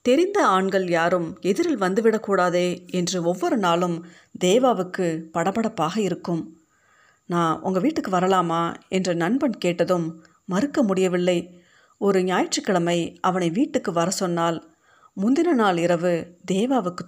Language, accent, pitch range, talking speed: Tamil, native, 175-210 Hz, 105 wpm